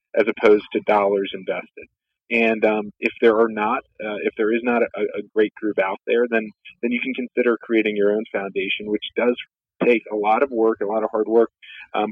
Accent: American